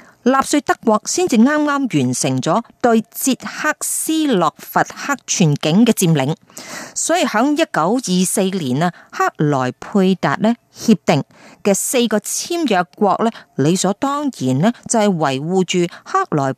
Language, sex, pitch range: Chinese, female, 175-255 Hz